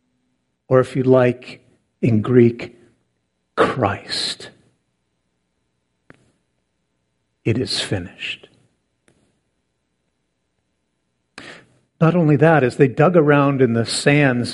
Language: English